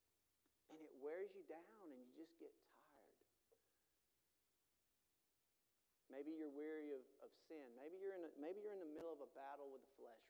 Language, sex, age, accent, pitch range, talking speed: English, male, 40-59, American, 140-175 Hz, 170 wpm